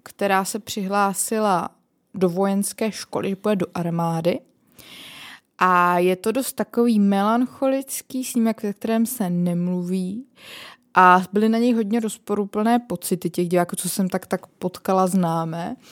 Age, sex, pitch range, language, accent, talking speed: 20-39, female, 185-230 Hz, Czech, native, 135 wpm